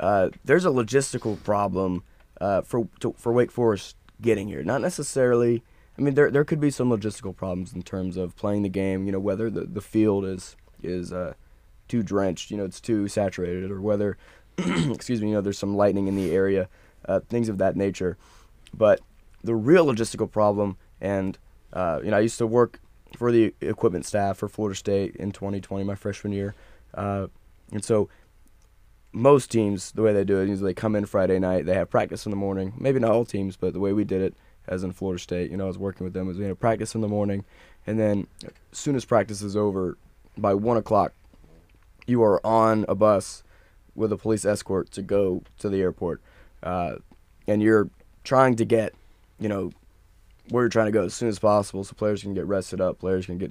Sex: male